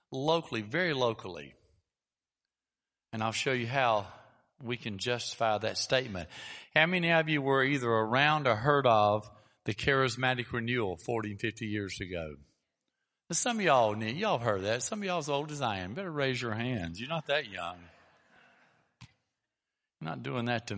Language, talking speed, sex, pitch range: English, 165 wpm, male, 110-155 Hz